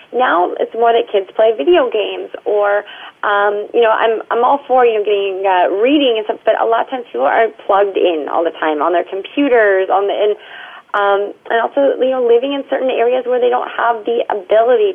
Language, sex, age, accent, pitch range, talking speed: English, female, 30-49, American, 195-250 Hz, 225 wpm